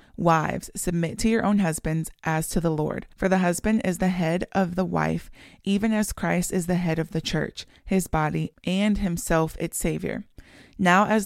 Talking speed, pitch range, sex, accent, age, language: 190 wpm, 160-185 Hz, female, American, 20-39, English